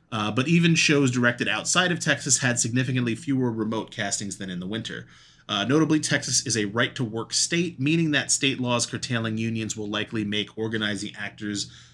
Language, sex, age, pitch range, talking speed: English, male, 30-49, 105-155 Hz, 175 wpm